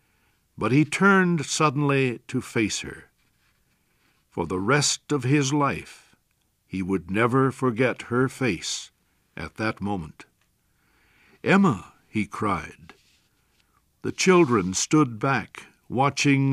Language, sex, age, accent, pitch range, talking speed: English, male, 60-79, American, 100-140 Hz, 110 wpm